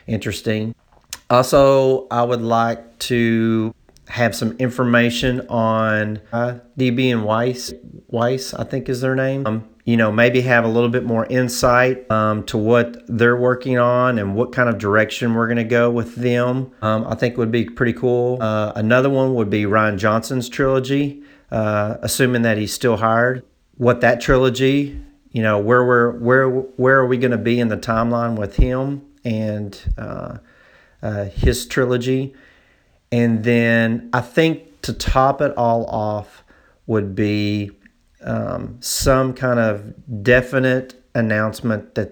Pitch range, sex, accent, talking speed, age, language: 105-125 Hz, male, American, 155 wpm, 40-59, English